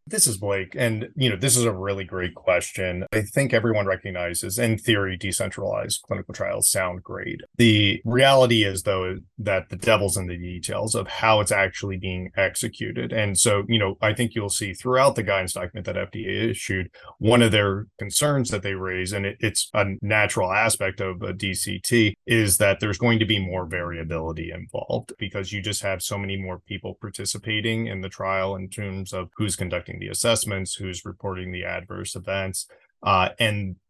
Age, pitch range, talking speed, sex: 30-49, 95-110 Hz, 185 wpm, male